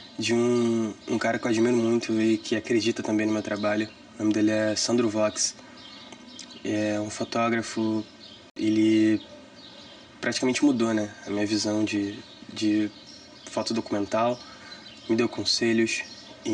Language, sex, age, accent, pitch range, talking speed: Portuguese, male, 20-39, Brazilian, 110-120 Hz, 140 wpm